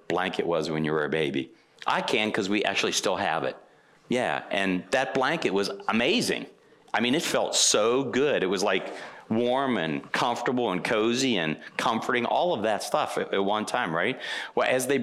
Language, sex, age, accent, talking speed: English, male, 40-59, American, 195 wpm